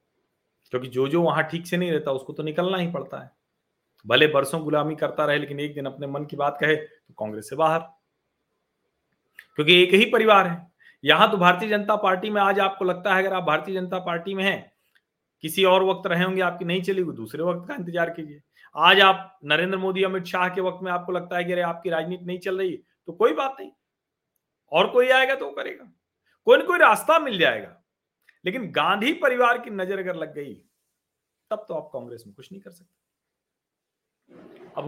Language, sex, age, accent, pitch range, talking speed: Hindi, male, 40-59, native, 145-190 Hz, 205 wpm